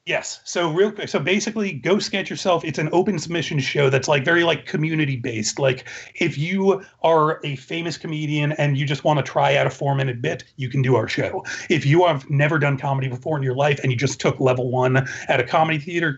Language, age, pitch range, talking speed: English, 30-49, 135-160 Hz, 235 wpm